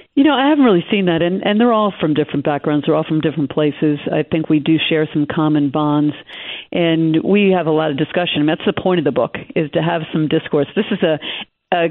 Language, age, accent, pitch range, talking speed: English, 50-69, American, 155-195 Hz, 245 wpm